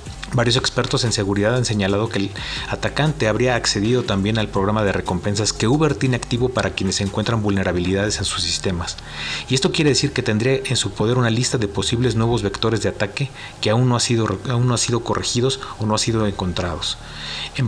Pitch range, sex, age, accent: 100-125 Hz, male, 40-59, Mexican